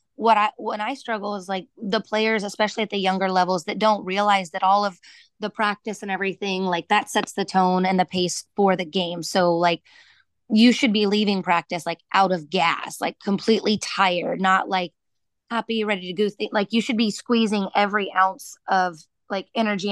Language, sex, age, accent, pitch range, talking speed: English, female, 20-39, American, 185-215 Hz, 195 wpm